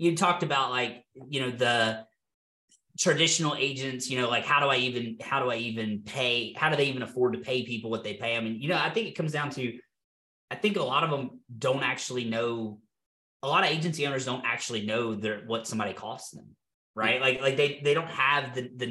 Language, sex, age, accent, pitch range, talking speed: English, male, 20-39, American, 115-145 Hz, 230 wpm